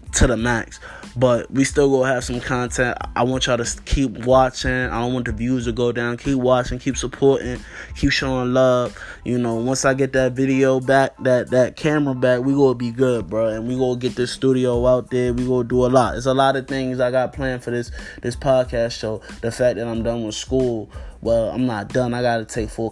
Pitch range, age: 115-130 Hz, 20-39